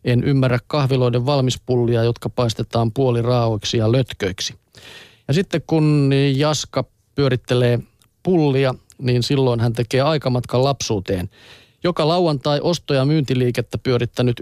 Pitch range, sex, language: 120-155 Hz, male, Finnish